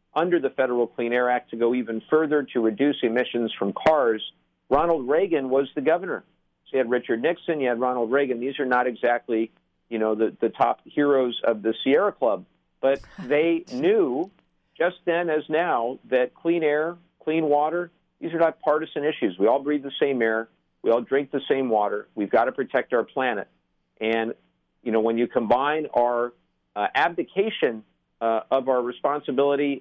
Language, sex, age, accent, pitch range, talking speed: English, male, 50-69, American, 115-155 Hz, 185 wpm